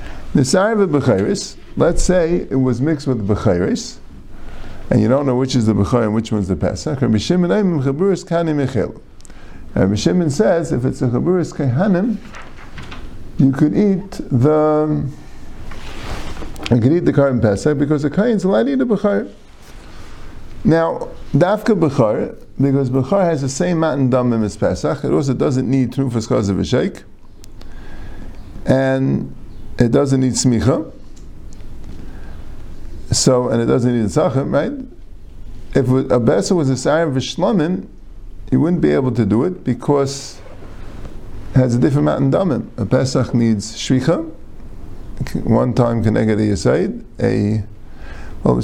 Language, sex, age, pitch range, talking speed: English, male, 50-69, 100-140 Hz, 140 wpm